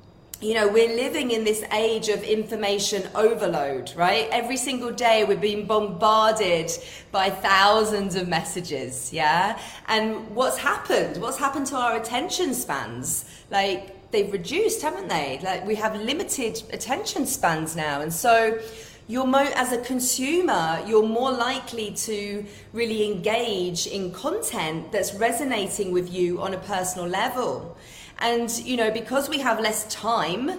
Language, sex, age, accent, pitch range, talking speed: English, female, 30-49, British, 195-245 Hz, 145 wpm